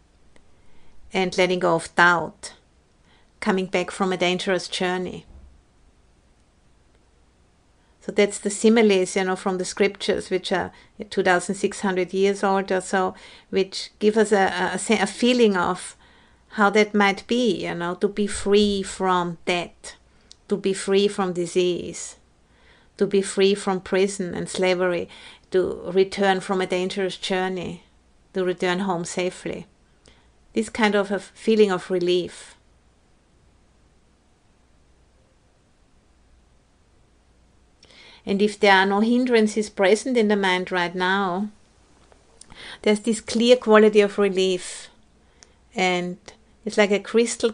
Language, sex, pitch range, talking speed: English, female, 180-205 Hz, 125 wpm